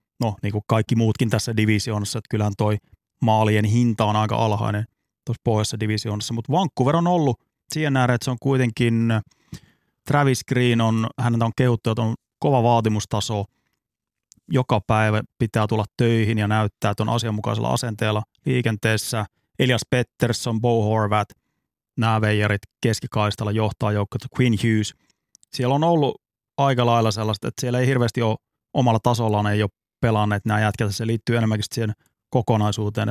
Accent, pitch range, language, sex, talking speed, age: native, 110-125 Hz, Finnish, male, 150 wpm, 30-49